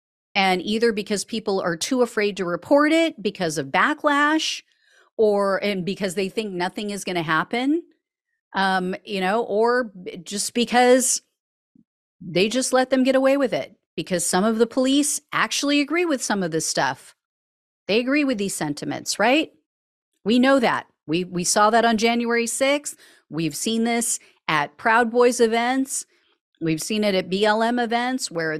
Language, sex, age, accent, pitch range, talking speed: English, female, 40-59, American, 175-245 Hz, 165 wpm